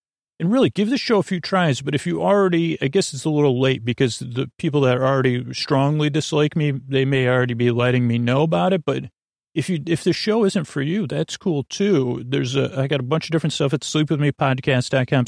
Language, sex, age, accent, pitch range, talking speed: English, male, 40-59, American, 125-160 Hz, 230 wpm